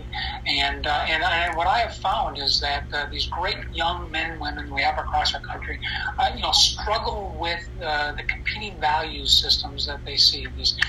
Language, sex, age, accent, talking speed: English, male, 50-69, American, 200 wpm